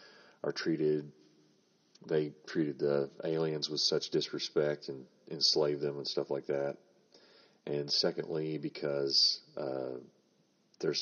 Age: 40-59